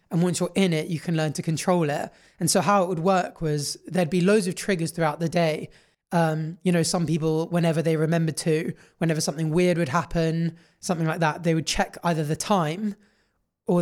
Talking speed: 215 wpm